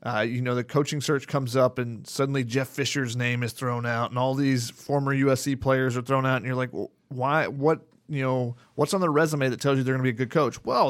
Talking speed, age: 260 wpm, 30-49